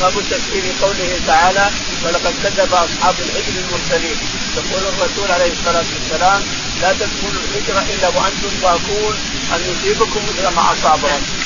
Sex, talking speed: male, 130 wpm